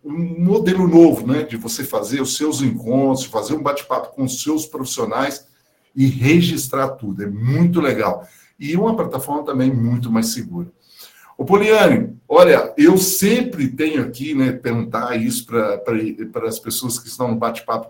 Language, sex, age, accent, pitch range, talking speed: Portuguese, male, 60-79, Brazilian, 135-185 Hz, 160 wpm